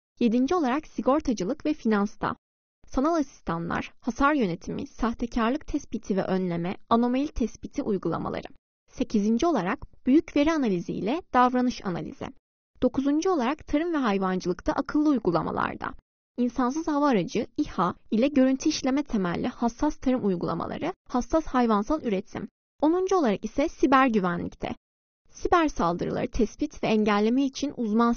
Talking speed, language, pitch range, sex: 120 wpm, Turkish, 215-290 Hz, female